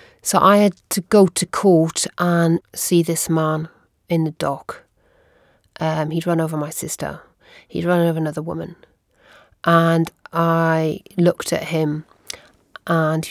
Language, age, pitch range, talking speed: English, 40-59, 160-185 Hz, 145 wpm